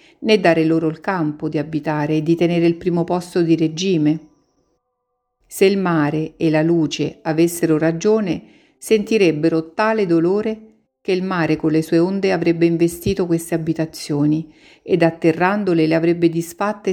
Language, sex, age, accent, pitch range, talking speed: Italian, female, 50-69, native, 155-185 Hz, 150 wpm